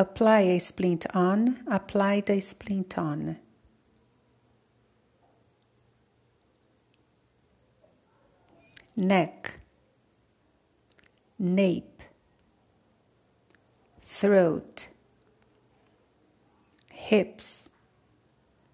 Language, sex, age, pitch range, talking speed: English, female, 50-69, 105-170 Hz, 40 wpm